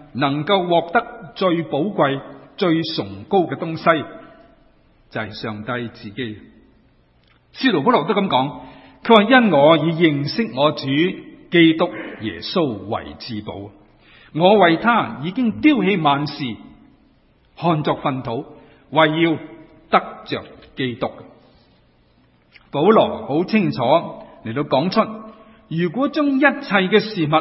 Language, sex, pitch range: Chinese, male, 115-175 Hz